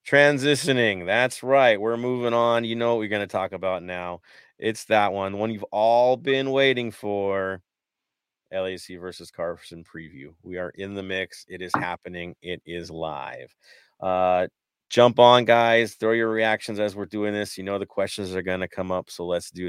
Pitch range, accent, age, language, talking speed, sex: 95-120 Hz, American, 30-49, English, 190 wpm, male